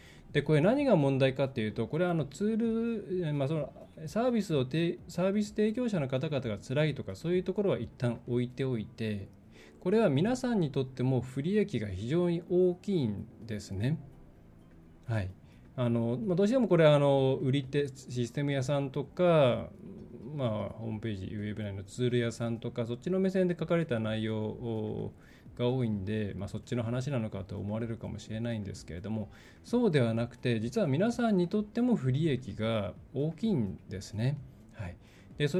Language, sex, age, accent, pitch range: Japanese, male, 20-39, native, 110-170 Hz